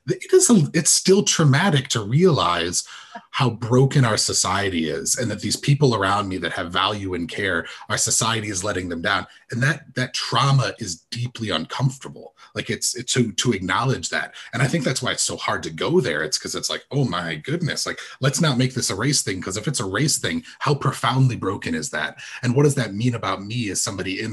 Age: 30-49